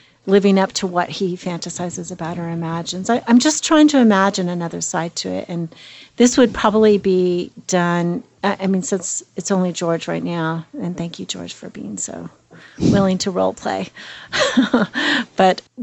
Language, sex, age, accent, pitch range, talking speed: English, female, 40-59, American, 175-220 Hz, 165 wpm